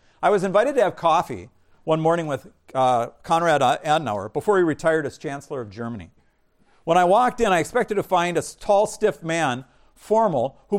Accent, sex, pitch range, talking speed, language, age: American, male, 145-200 Hz, 185 wpm, English, 50-69